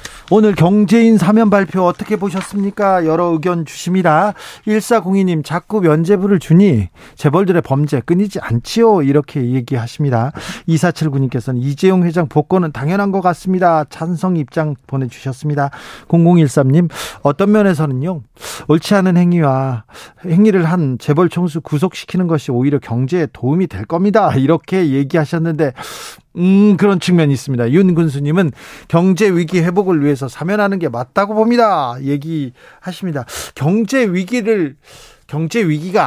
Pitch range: 145-200 Hz